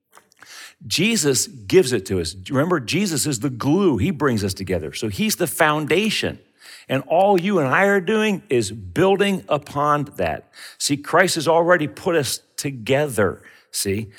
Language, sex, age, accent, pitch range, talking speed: English, male, 50-69, American, 105-150 Hz, 155 wpm